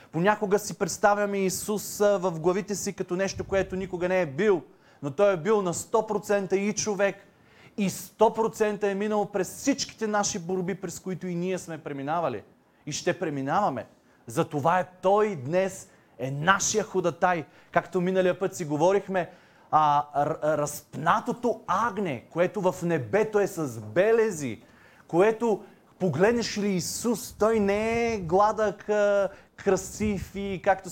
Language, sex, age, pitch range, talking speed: Bulgarian, male, 30-49, 170-205 Hz, 140 wpm